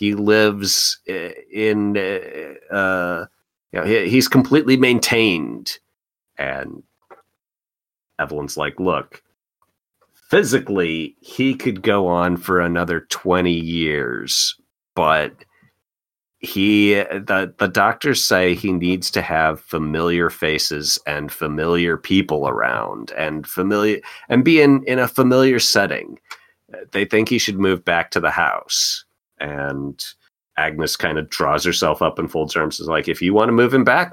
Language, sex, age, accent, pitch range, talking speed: English, male, 30-49, American, 85-115 Hz, 135 wpm